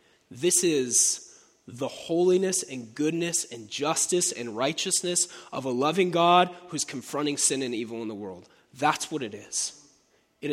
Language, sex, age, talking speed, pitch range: English, male, 20-39, 155 wpm, 150-235 Hz